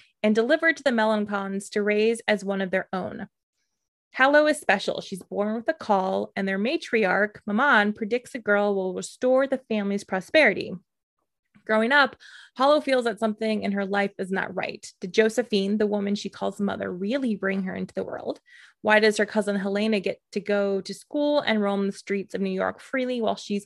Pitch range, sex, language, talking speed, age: 195-230 Hz, female, English, 195 wpm, 20-39